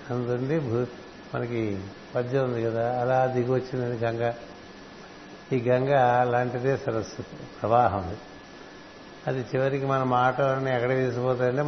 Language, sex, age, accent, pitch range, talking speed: Telugu, male, 60-79, native, 120-135 Hz, 100 wpm